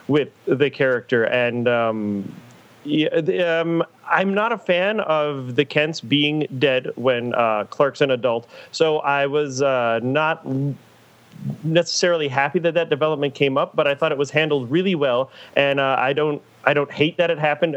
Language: English